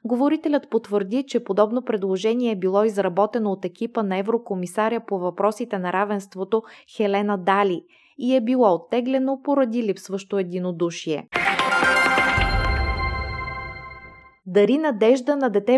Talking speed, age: 110 wpm, 20-39